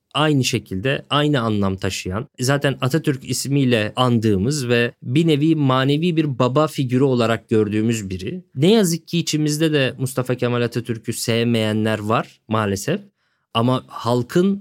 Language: Turkish